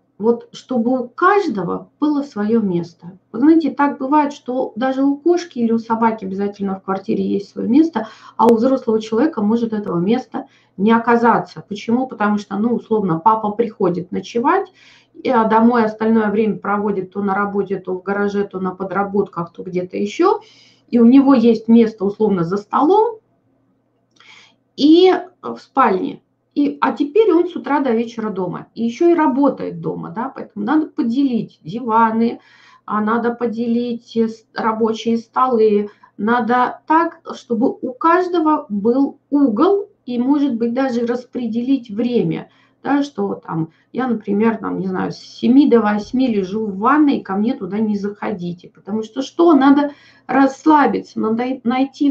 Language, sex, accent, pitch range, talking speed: Russian, female, native, 210-275 Hz, 155 wpm